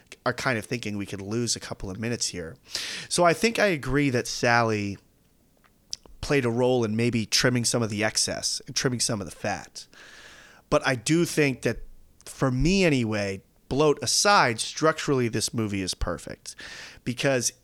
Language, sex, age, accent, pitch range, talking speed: English, male, 30-49, American, 105-135 Hz, 175 wpm